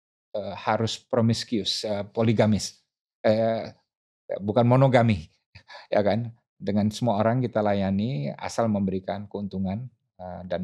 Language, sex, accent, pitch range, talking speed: Indonesian, male, native, 95-110 Hz, 120 wpm